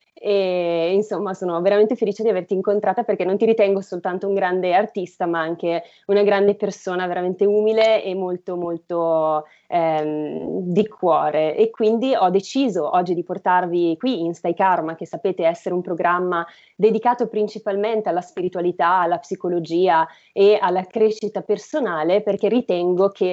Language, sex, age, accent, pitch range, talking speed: Italian, female, 20-39, native, 175-210 Hz, 150 wpm